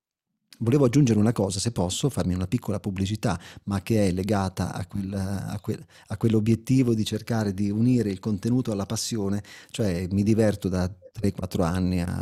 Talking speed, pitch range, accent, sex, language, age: 170 wpm, 95-115 Hz, native, male, Italian, 30-49